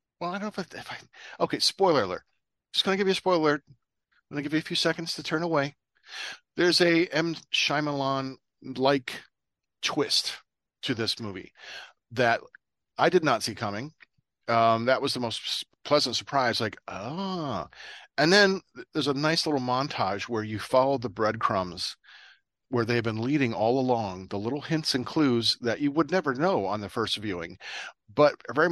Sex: male